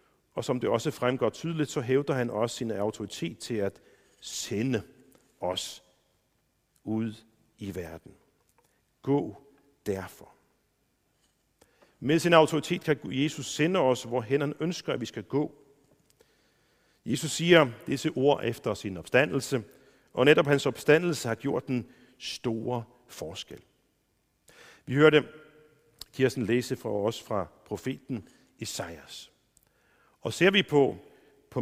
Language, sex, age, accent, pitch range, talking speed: Danish, male, 50-69, native, 120-150 Hz, 125 wpm